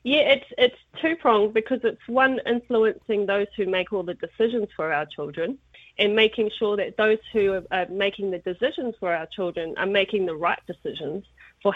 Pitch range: 185-220 Hz